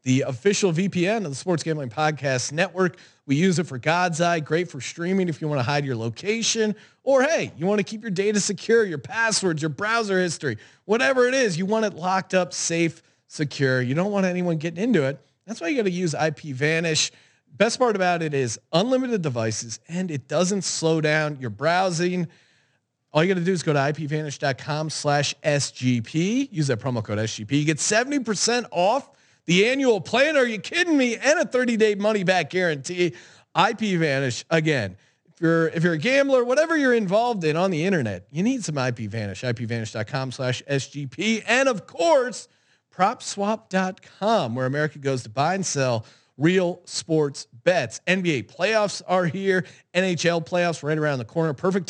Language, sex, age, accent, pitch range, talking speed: English, male, 30-49, American, 145-200 Hz, 180 wpm